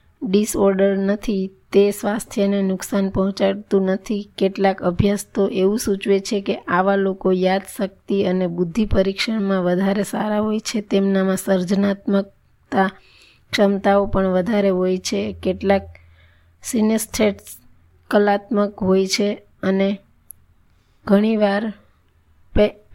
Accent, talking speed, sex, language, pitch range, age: native, 75 wpm, female, Gujarati, 190-205 Hz, 20-39